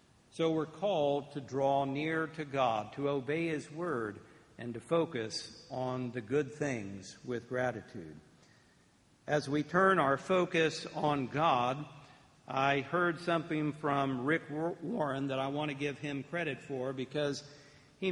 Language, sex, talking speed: English, male, 145 wpm